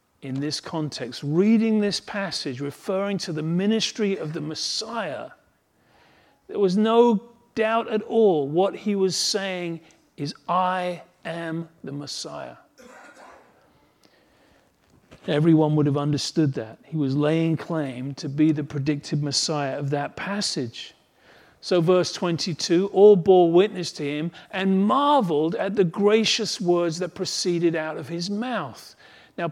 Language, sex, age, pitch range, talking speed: English, male, 40-59, 150-195 Hz, 135 wpm